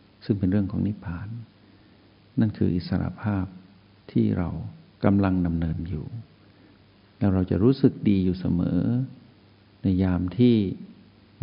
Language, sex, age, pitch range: Thai, male, 60-79, 90-105 Hz